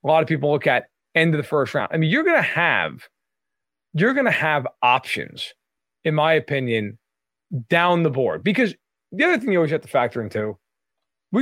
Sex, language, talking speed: male, English, 205 wpm